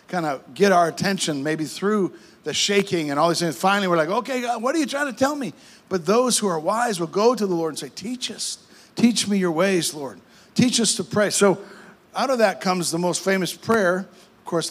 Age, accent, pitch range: 50-69, American, 160-200 Hz